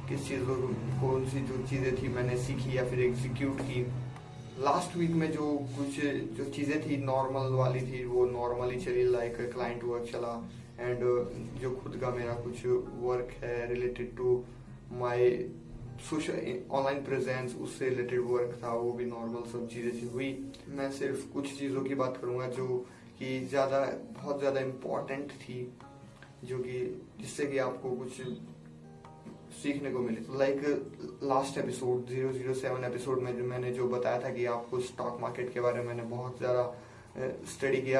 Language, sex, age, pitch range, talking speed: English, male, 20-39, 120-130 Hz, 105 wpm